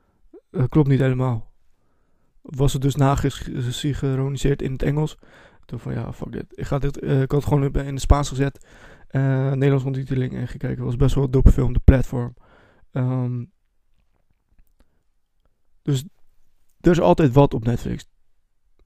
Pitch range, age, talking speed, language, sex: 110-140 Hz, 20-39, 155 wpm, Dutch, male